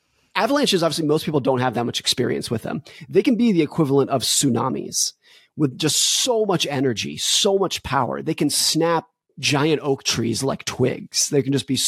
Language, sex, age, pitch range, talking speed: English, male, 30-49, 125-155 Hz, 190 wpm